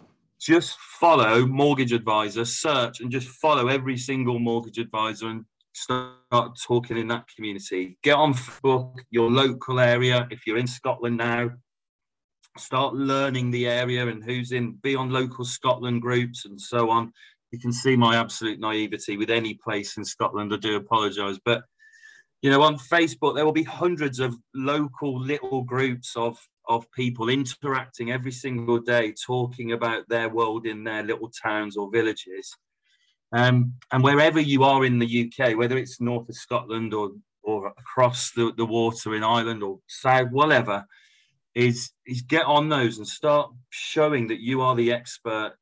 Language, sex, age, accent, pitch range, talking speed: English, male, 30-49, British, 115-130 Hz, 165 wpm